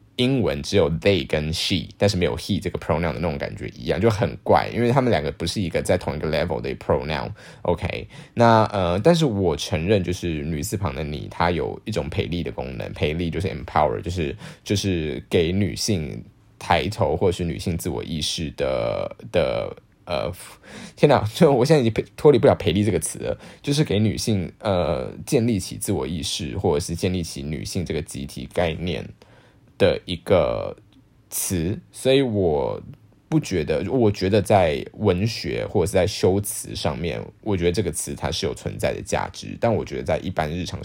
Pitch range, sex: 85-110 Hz, male